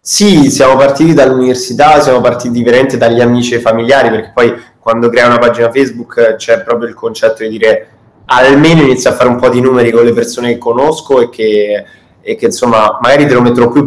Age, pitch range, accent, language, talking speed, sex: 20-39, 115-130 Hz, native, Italian, 205 wpm, male